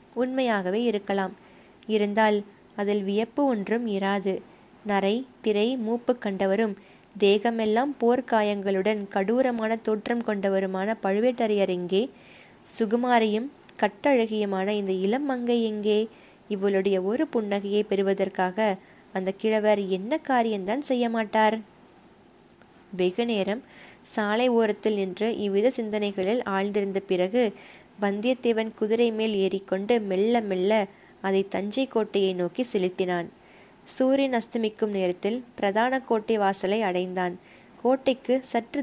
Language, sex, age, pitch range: Tamil, female, 20-39, 195-235 Hz